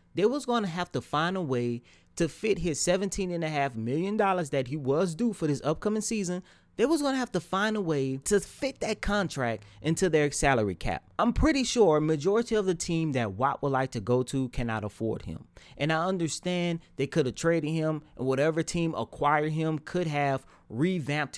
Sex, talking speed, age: male, 215 wpm, 30-49